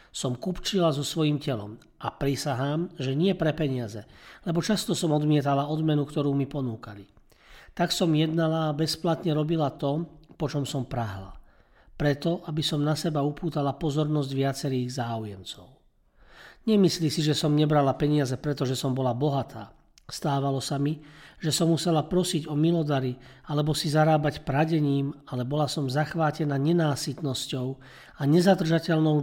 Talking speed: 140 wpm